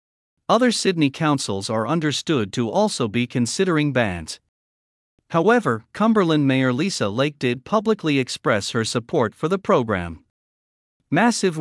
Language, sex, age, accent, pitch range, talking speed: English, male, 50-69, American, 115-165 Hz, 125 wpm